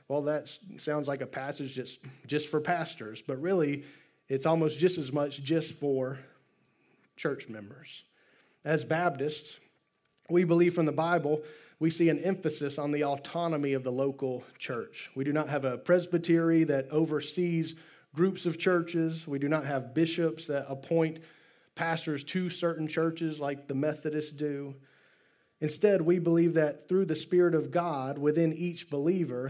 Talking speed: 155 wpm